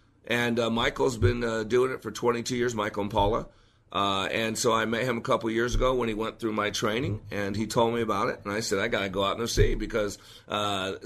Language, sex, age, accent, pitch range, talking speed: English, male, 50-69, American, 110-145 Hz, 255 wpm